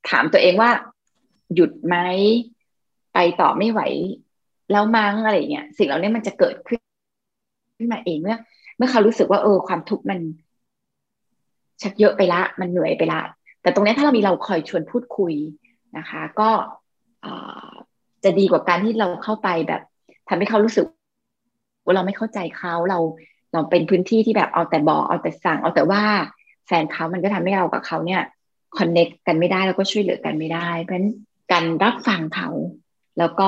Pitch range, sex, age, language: 175-220 Hz, female, 20-39, Thai